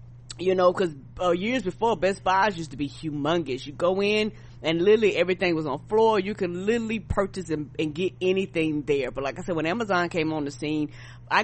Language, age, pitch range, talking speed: English, 20-39, 155-195 Hz, 215 wpm